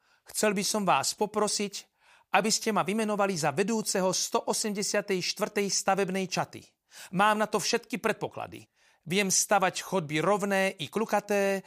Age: 40-59